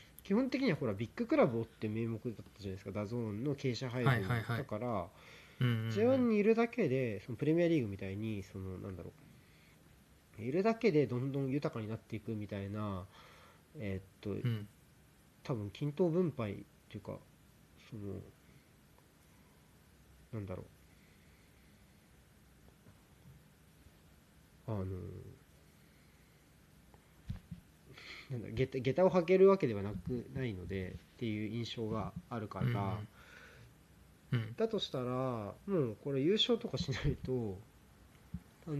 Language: Japanese